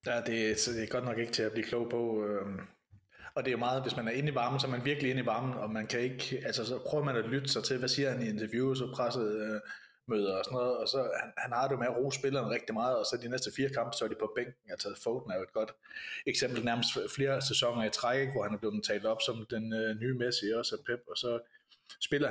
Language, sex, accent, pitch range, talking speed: Danish, male, native, 110-135 Hz, 295 wpm